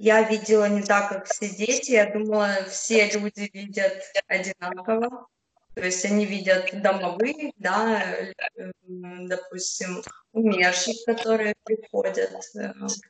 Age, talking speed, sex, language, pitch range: 20-39, 105 wpm, female, Russian, 200-245 Hz